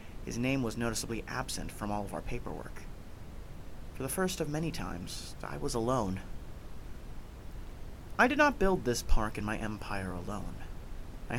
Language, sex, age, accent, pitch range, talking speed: English, male, 30-49, American, 100-135 Hz, 160 wpm